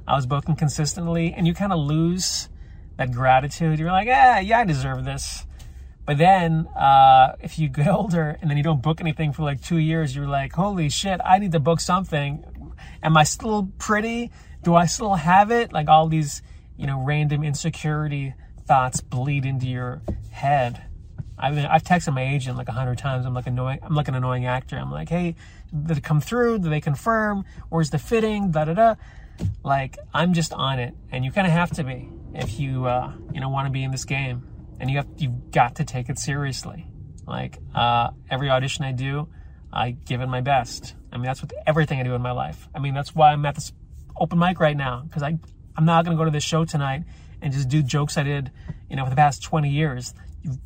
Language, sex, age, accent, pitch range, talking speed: English, male, 30-49, American, 130-160 Hz, 220 wpm